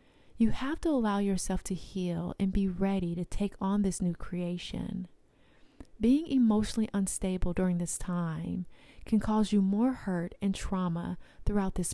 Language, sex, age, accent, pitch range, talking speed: English, female, 30-49, American, 180-215 Hz, 155 wpm